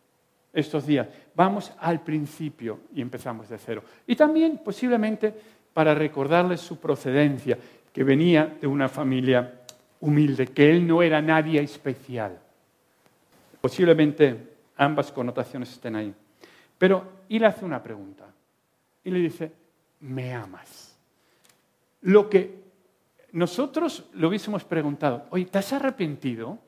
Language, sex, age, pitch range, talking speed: English, male, 50-69, 140-220 Hz, 120 wpm